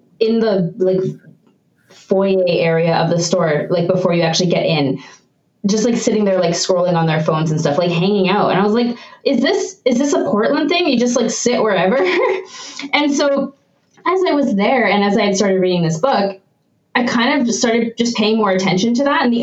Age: 20-39